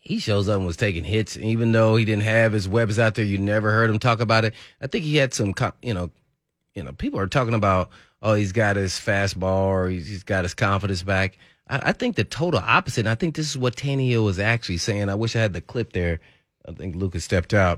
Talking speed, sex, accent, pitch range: 250 wpm, male, American, 95-120 Hz